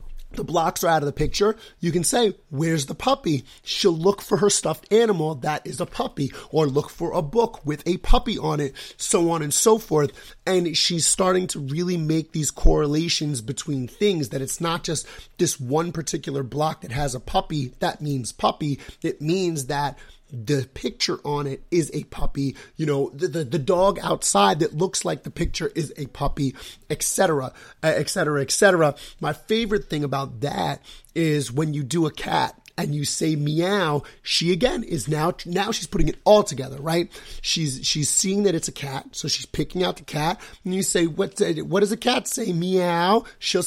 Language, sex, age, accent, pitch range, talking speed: English, male, 30-49, American, 145-185 Hz, 195 wpm